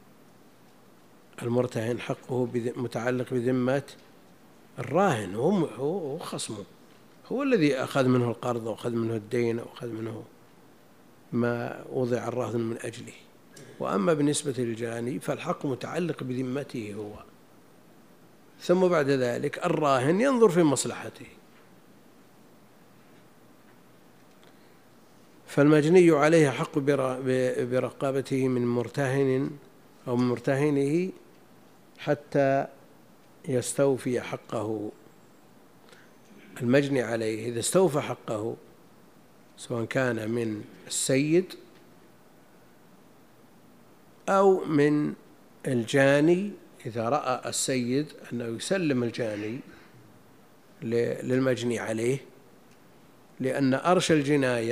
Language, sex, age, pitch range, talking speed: Arabic, male, 50-69, 120-145 Hz, 80 wpm